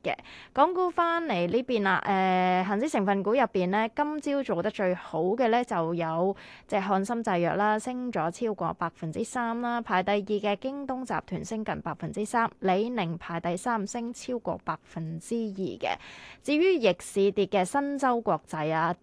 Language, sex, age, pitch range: Chinese, female, 20-39, 180-235 Hz